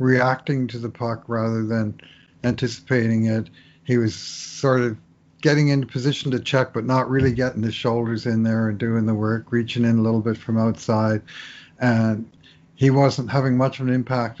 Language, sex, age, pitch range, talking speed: English, male, 50-69, 105-125 Hz, 185 wpm